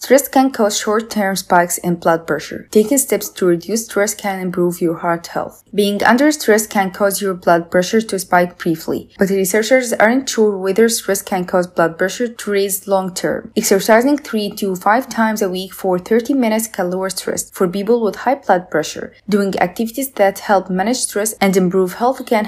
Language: English